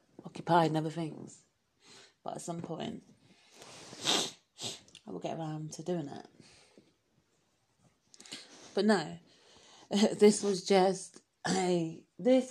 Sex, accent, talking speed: female, British, 105 wpm